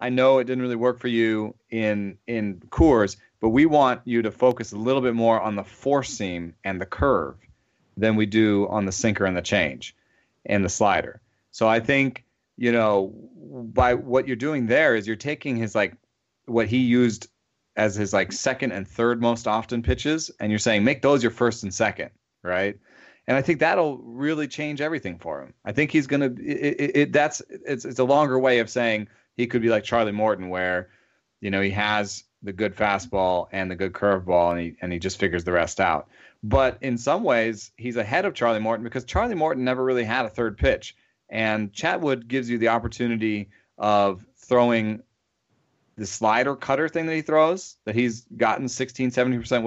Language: English